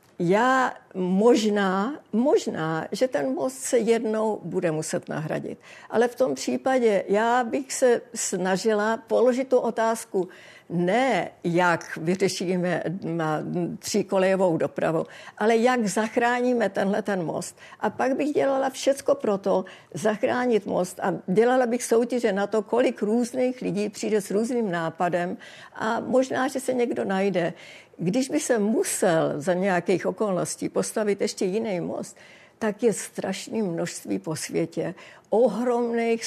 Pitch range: 190-245 Hz